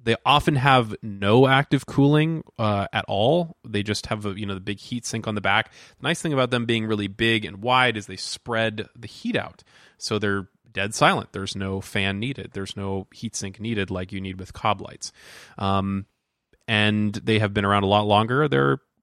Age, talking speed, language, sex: 20-39, 210 wpm, English, male